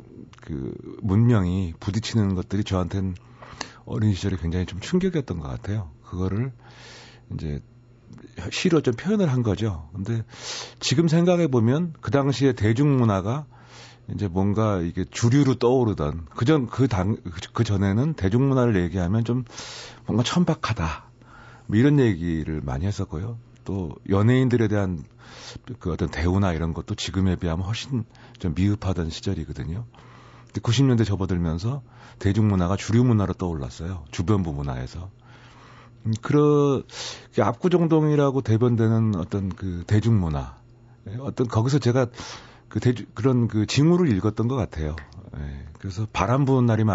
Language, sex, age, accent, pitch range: Korean, male, 40-59, native, 95-125 Hz